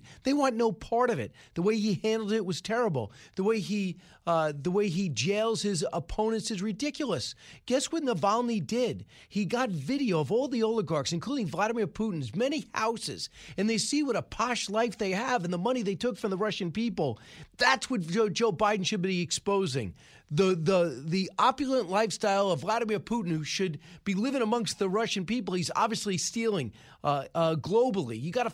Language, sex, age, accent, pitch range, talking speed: English, male, 40-59, American, 180-235 Hz, 190 wpm